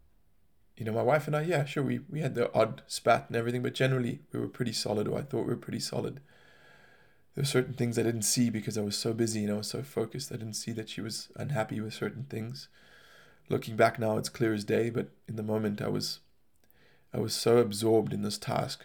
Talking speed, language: 240 wpm, English